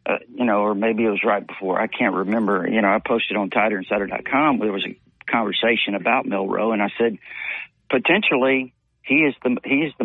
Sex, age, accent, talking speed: male, 50-69, American, 190 wpm